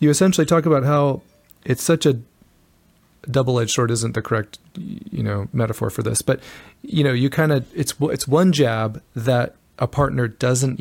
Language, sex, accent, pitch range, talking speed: English, male, American, 110-145 Hz, 180 wpm